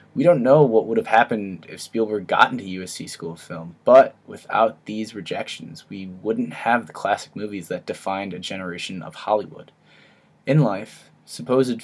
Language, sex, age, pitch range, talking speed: English, male, 10-29, 95-120 Hz, 170 wpm